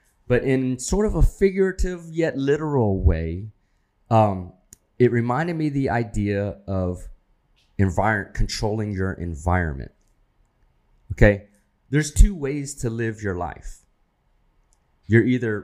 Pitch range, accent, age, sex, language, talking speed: 90-110 Hz, American, 30-49, male, English, 120 wpm